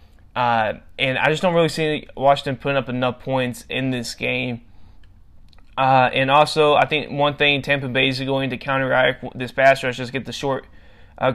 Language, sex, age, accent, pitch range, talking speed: English, male, 20-39, American, 125-140 Hz, 195 wpm